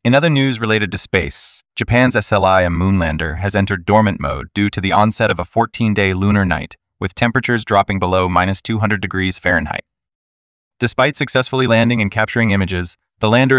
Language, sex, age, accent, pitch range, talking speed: English, male, 20-39, American, 95-115 Hz, 170 wpm